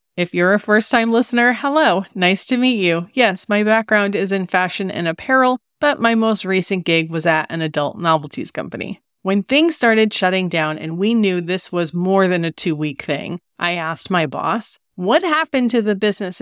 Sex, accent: female, American